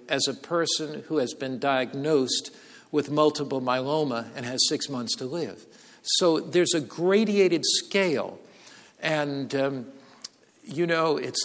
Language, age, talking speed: English, 50-69, 135 wpm